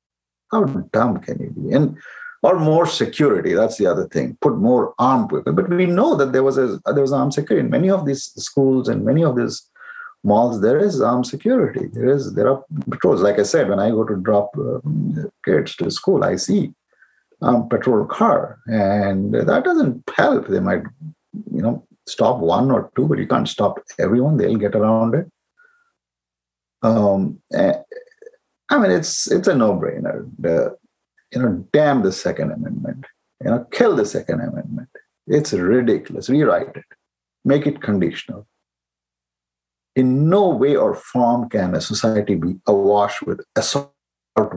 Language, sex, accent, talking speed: English, male, Indian, 165 wpm